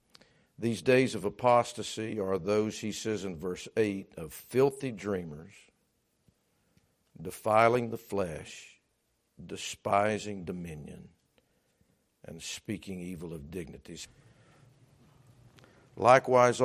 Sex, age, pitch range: male, 50-69, 110-130 Hz